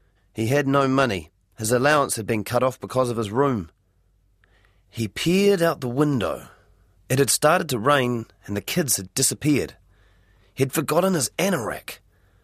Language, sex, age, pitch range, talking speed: English, male, 30-49, 95-130 Hz, 160 wpm